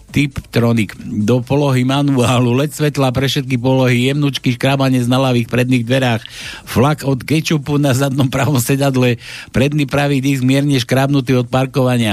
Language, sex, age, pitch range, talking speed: Slovak, male, 60-79, 115-150 Hz, 145 wpm